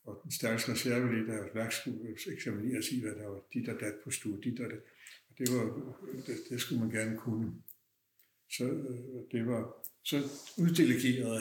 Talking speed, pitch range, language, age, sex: 155 wpm, 115-135 Hz, Danish, 60-79, male